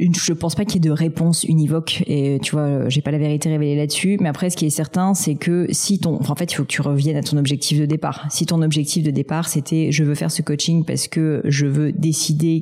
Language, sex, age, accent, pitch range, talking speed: French, female, 30-49, French, 145-170 Hz, 275 wpm